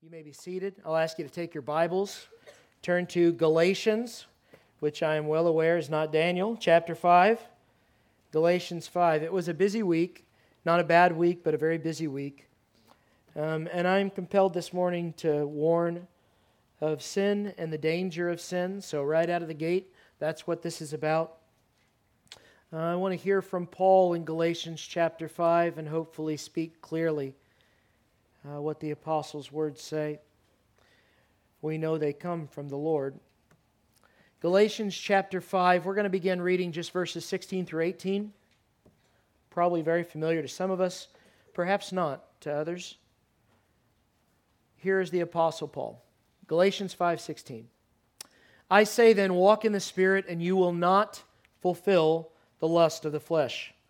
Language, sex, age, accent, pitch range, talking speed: English, male, 40-59, American, 155-185 Hz, 160 wpm